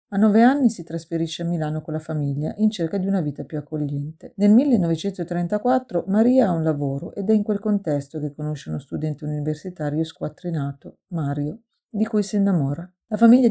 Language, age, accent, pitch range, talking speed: Italian, 40-59, native, 155-200 Hz, 180 wpm